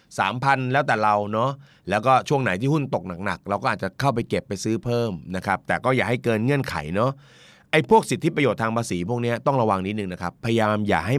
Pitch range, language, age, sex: 100-130 Hz, Thai, 30-49, male